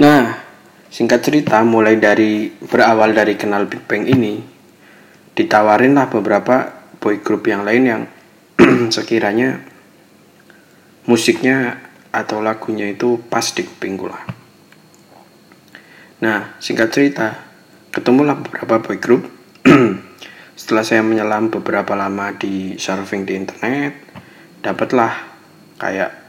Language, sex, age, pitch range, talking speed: Indonesian, male, 20-39, 105-120 Hz, 100 wpm